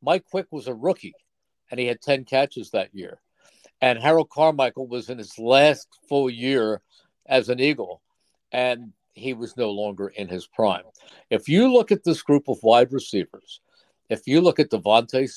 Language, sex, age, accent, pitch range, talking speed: English, male, 60-79, American, 120-155 Hz, 180 wpm